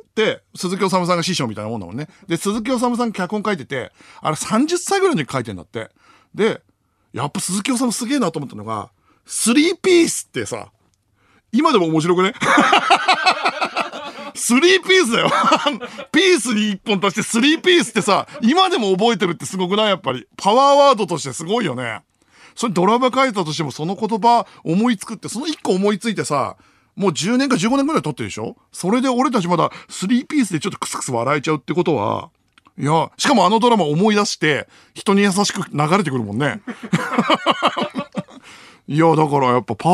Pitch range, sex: 150-245 Hz, male